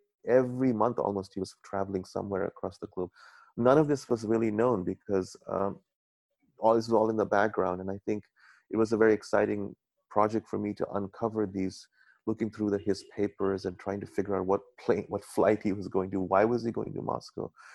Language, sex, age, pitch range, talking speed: English, male, 30-49, 95-110 Hz, 215 wpm